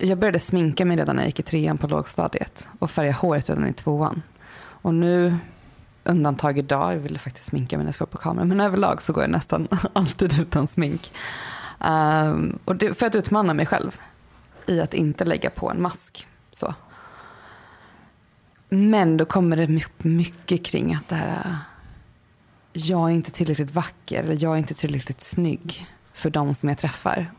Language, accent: Swedish, native